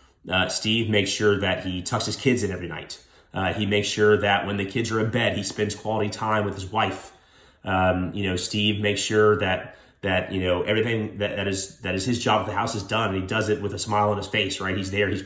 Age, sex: 30-49, male